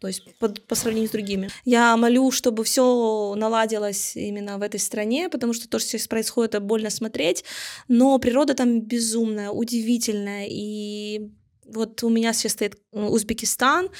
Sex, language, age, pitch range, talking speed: female, Russian, 20-39, 215-255 Hz, 155 wpm